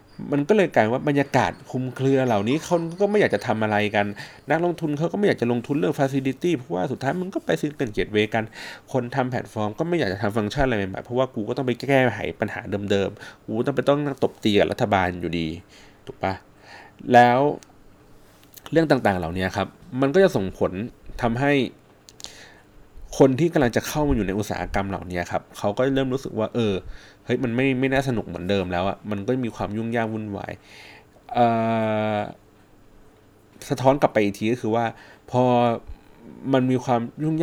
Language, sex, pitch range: Thai, male, 100-135 Hz